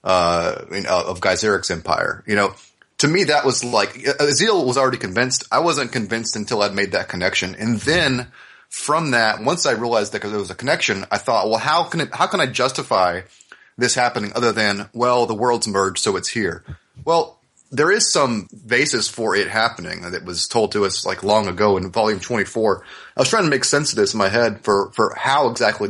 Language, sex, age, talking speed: English, male, 30-49, 215 wpm